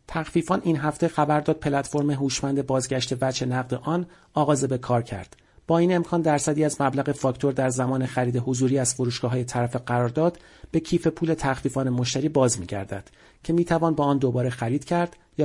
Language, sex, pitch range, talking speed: Persian, male, 125-150 Hz, 180 wpm